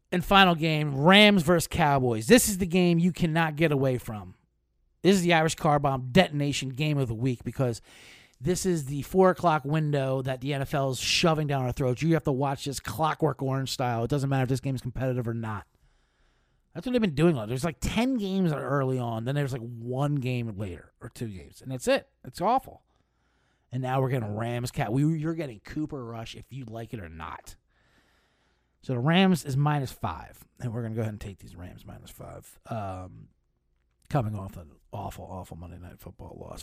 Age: 30-49